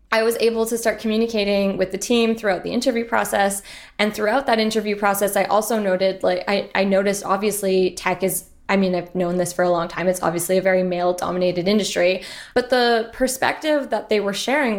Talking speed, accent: 205 wpm, American